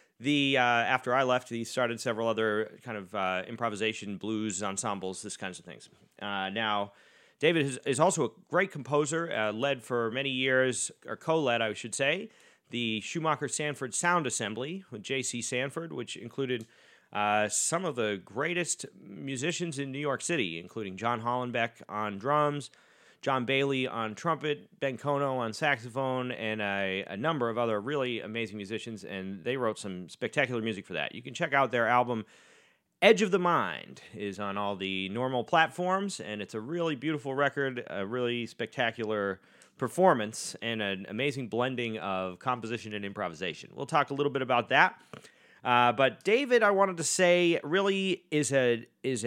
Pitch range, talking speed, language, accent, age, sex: 110-145 Hz, 170 wpm, English, American, 30-49, male